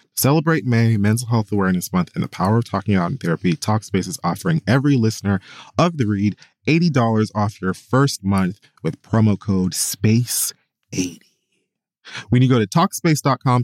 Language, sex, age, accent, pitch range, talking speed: English, male, 20-39, American, 100-135 Hz, 160 wpm